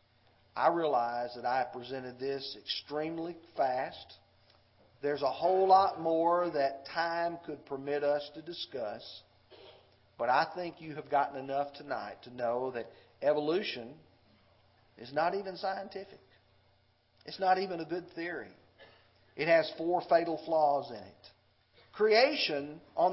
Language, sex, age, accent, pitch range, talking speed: English, male, 40-59, American, 110-180 Hz, 135 wpm